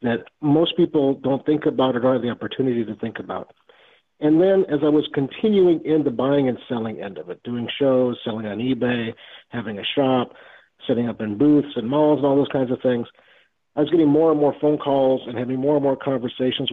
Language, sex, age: English, male, 50-69